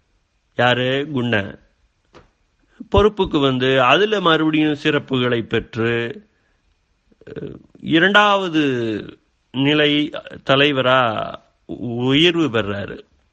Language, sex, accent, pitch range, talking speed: Tamil, male, native, 105-140 Hz, 60 wpm